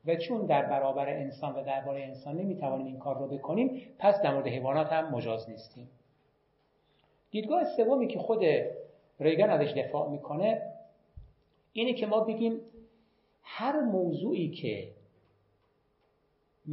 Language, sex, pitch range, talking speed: Persian, male, 140-185 Hz, 130 wpm